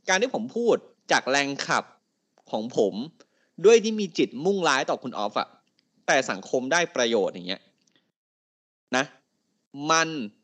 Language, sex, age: Thai, male, 20-39